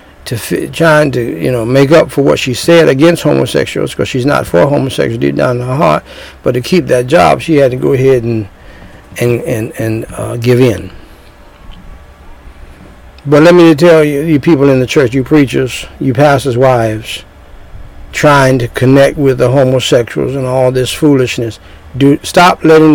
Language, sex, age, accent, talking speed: English, male, 60-79, American, 180 wpm